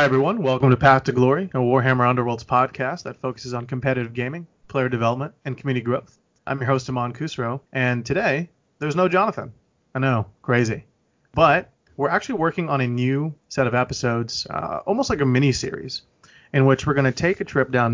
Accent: American